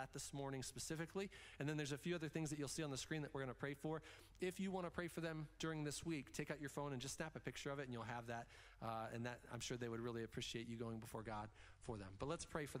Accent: American